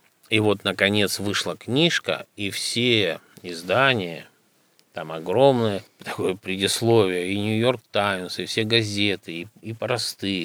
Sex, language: male, Russian